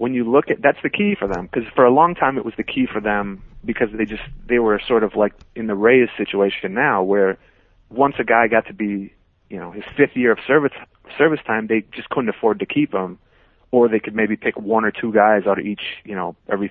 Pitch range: 100-120 Hz